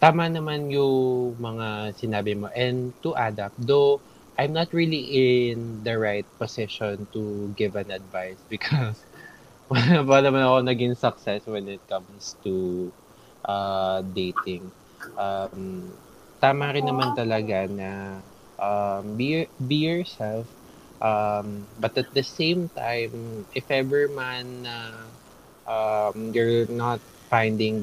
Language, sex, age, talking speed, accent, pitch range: Filipino, male, 20-39, 120 wpm, native, 100-125 Hz